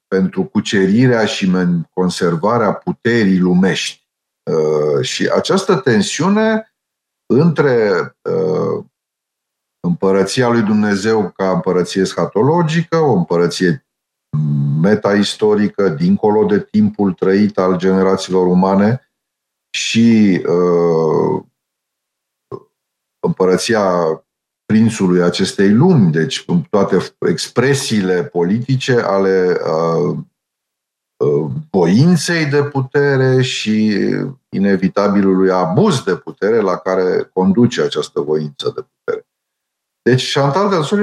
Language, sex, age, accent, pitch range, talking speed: Romanian, male, 50-69, native, 90-140 Hz, 80 wpm